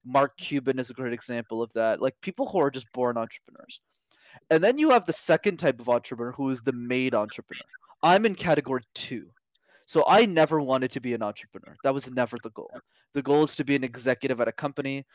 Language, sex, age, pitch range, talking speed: English, male, 20-39, 125-155 Hz, 220 wpm